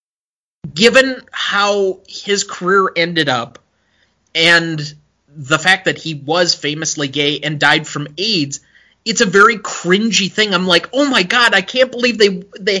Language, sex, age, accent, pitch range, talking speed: English, male, 30-49, American, 155-215 Hz, 155 wpm